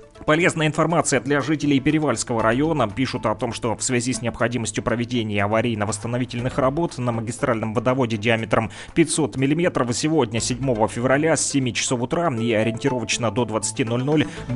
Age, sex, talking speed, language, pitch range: 20-39, male, 140 wpm, Russian, 115-140 Hz